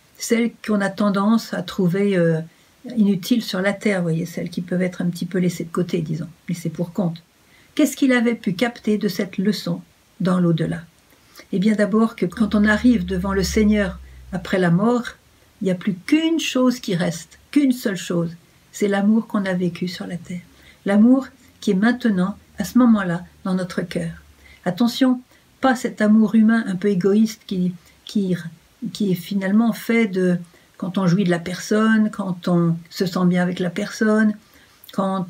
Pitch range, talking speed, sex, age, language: 180-225 Hz, 185 wpm, female, 60-79, French